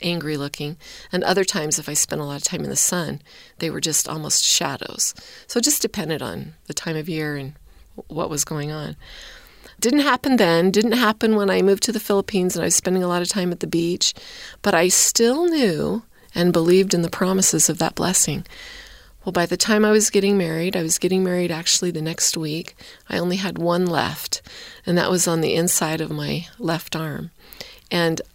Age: 30-49